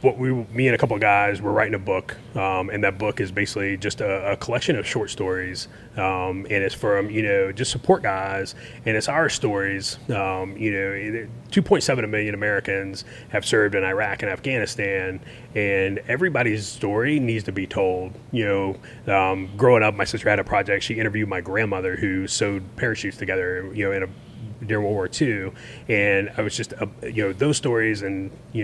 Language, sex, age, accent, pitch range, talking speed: English, male, 30-49, American, 100-120 Hz, 195 wpm